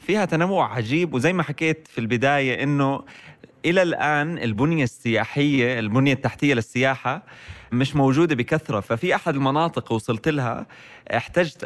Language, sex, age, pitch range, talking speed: Arabic, male, 20-39, 120-145 Hz, 130 wpm